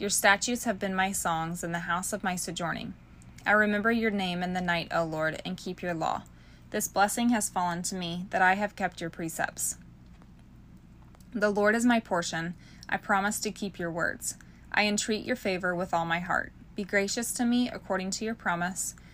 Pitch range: 170-210 Hz